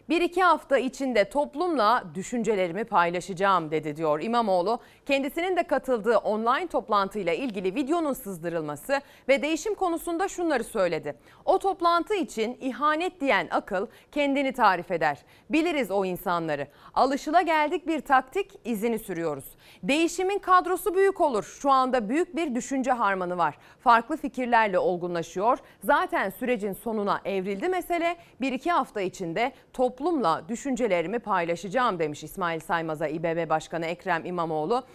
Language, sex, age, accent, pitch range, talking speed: Turkish, female, 30-49, native, 190-305 Hz, 125 wpm